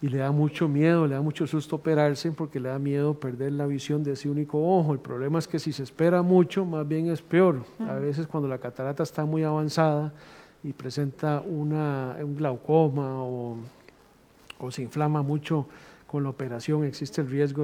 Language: Spanish